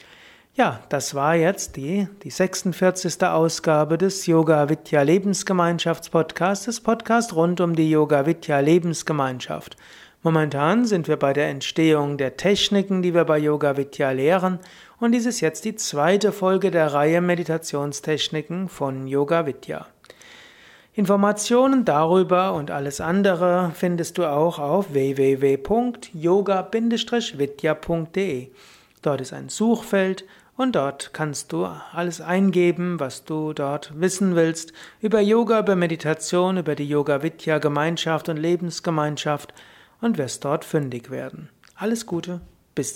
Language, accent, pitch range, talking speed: German, German, 145-190 Hz, 125 wpm